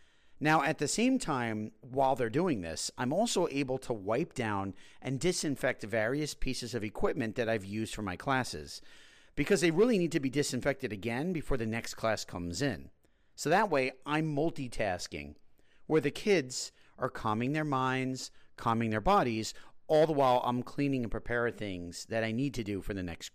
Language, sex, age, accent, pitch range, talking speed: English, male, 40-59, American, 105-140 Hz, 185 wpm